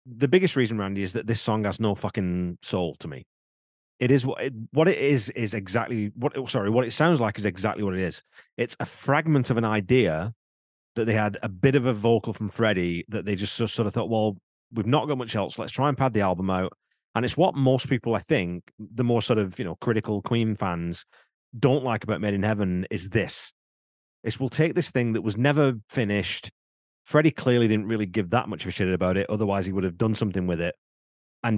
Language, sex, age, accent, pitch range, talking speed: English, male, 30-49, British, 95-125 Hz, 235 wpm